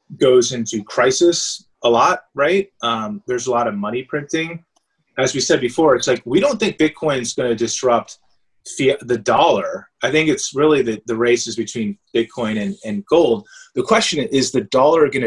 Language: English